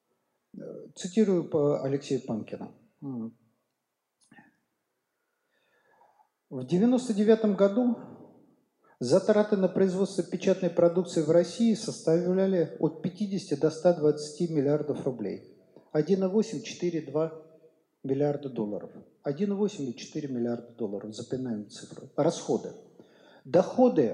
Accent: native